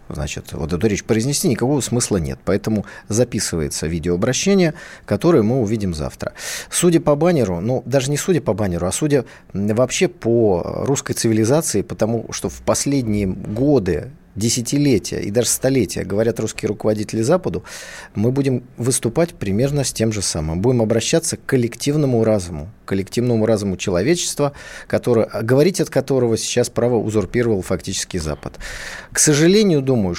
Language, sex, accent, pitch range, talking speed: Russian, male, native, 110-150 Hz, 145 wpm